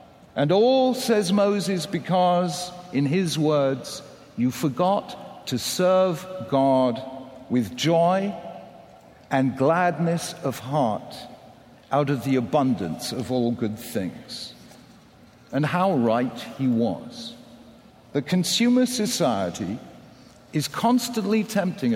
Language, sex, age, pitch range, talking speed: English, male, 50-69, 130-190 Hz, 105 wpm